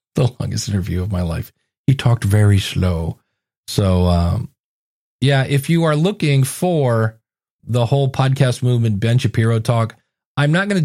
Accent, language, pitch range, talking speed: American, English, 105-130 Hz, 160 wpm